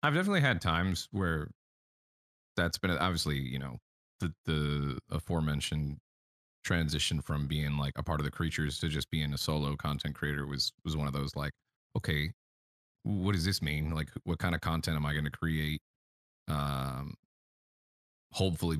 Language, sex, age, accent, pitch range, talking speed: English, male, 30-49, American, 80-95 Hz, 165 wpm